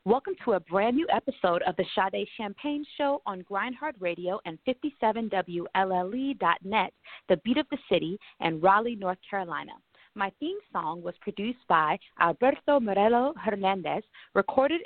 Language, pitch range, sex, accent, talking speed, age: English, 180-255 Hz, female, American, 135 wpm, 30-49